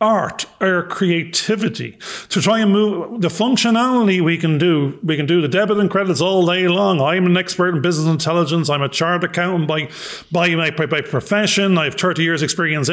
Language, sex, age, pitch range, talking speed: English, male, 30-49, 155-190 Hz, 200 wpm